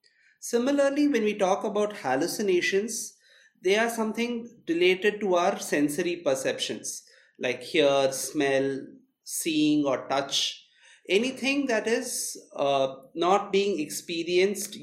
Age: 30-49